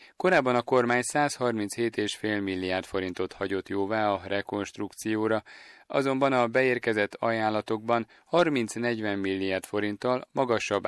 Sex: male